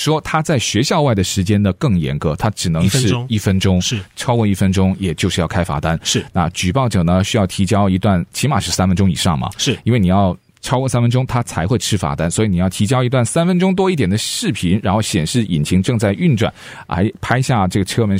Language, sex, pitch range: Chinese, male, 95-135 Hz